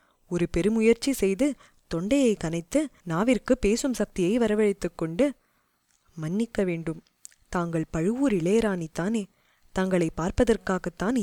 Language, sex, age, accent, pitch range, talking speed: Tamil, female, 20-39, native, 175-225 Hz, 90 wpm